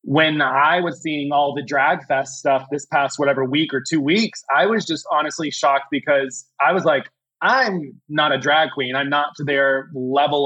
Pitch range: 135-160 Hz